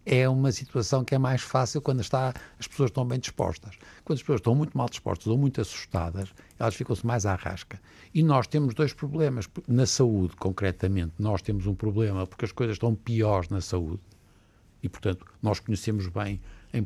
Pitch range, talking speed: 100-140 Hz, 190 wpm